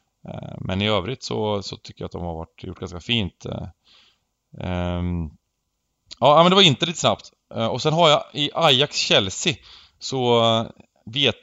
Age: 20-39